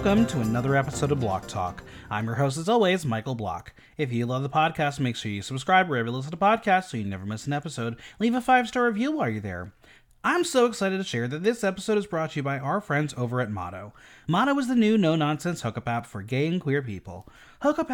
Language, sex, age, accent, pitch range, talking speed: English, male, 30-49, American, 120-195 Hz, 240 wpm